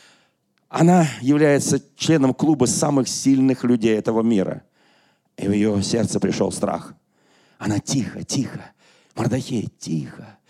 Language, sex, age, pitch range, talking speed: Russian, male, 40-59, 135-175 Hz, 115 wpm